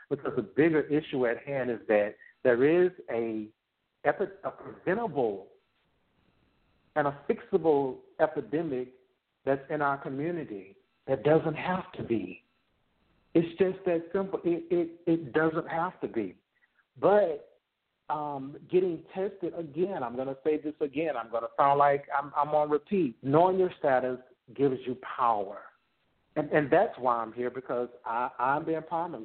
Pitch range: 115-155 Hz